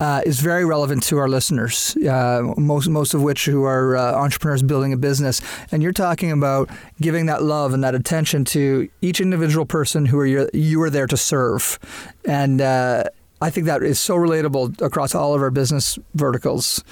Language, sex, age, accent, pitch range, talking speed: English, male, 40-59, American, 135-170 Hz, 195 wpm